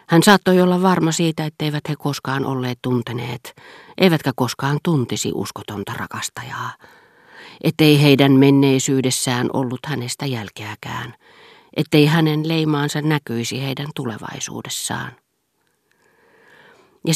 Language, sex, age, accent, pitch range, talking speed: Finnish, female, 40-59, native, 130-160 Hz, 100 wpm